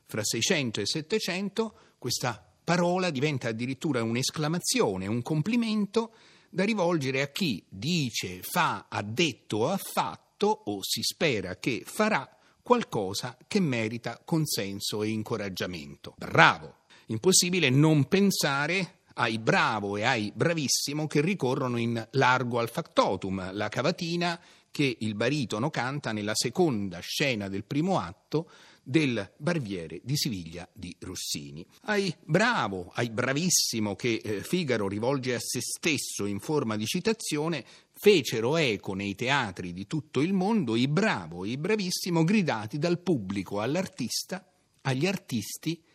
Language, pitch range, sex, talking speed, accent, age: Italian, 110-175 Hz, male, 130 wpm, native, 40-59